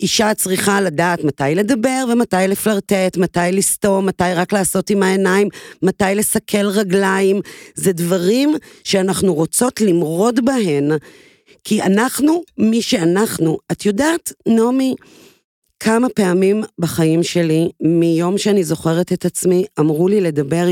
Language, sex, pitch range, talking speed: Hebrew, female, 175-220 Hz, 120 wpm